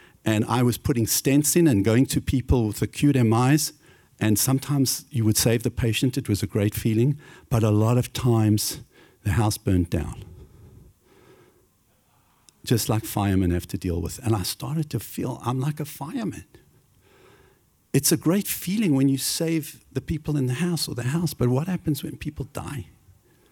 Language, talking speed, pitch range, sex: English, 180 wpm, 105-140 Hz, male